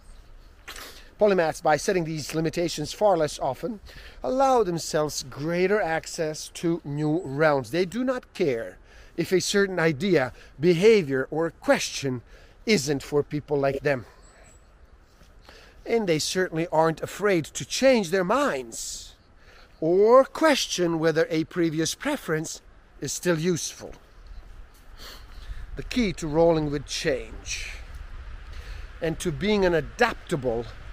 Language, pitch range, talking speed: English, 130-185 Hz, 115 wpm